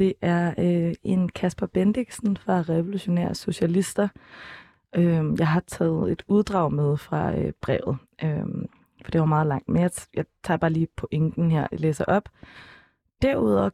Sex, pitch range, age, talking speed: female, 160-190 Hz, 20-39, 165 wpm